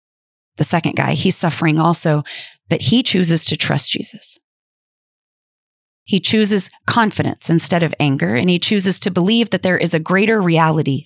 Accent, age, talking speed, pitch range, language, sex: American, 30-49, 155 wpm, 155-185 Hz, English, female